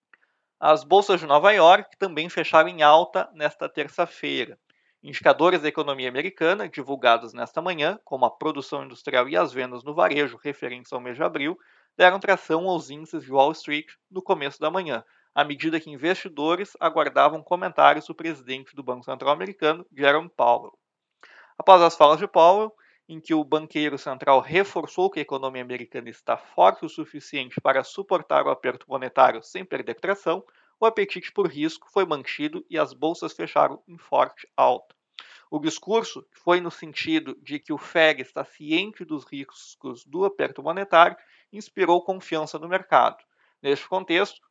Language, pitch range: Portuguese, 145-190 Hz